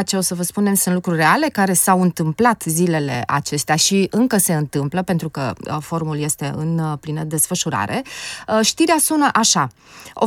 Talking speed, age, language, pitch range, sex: 165 wpm, 30-49, Romanian, 170-220 Hz, female